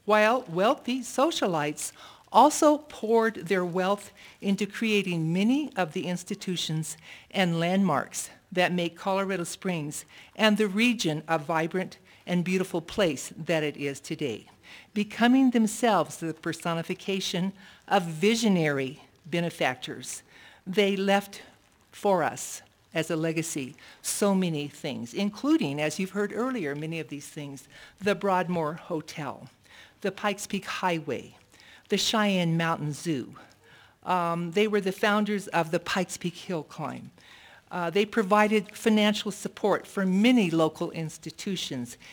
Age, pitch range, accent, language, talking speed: 50-69, 160-210 Hz, American, English, 125 wpm